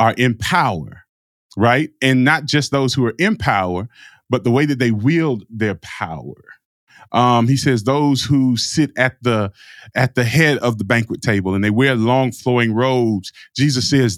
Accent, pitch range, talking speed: American, 115-145 Hz, 180 wpm